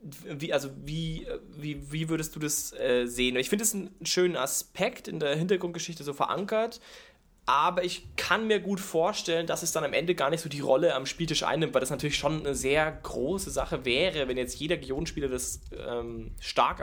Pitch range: 130-170 Hz